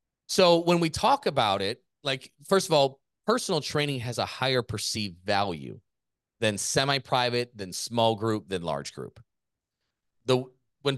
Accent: American